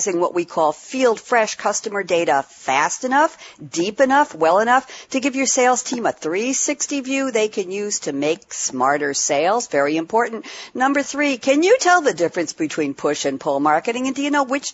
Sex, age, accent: female, 50-69, American